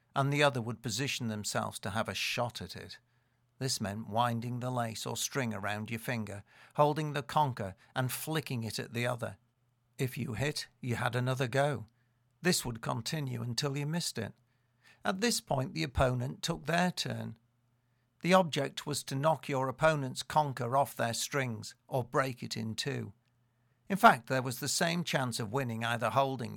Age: 50-69